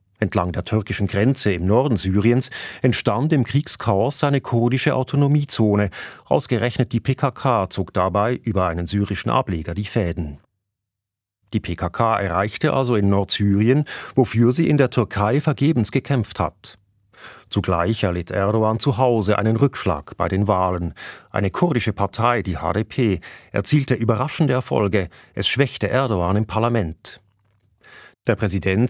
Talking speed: 130 wpm